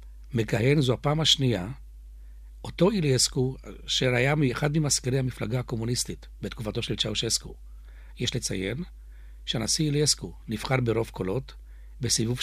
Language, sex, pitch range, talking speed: Hebrew, male, 100-135 Hz, 110 wpm